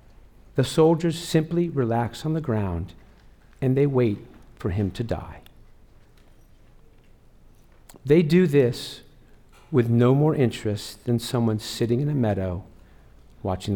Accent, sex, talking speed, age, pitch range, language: American, male, 120 wpm, 50-69, 100-140 Hz, English